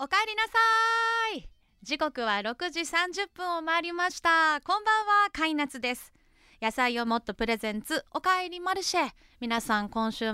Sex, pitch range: female, 200-310 Hz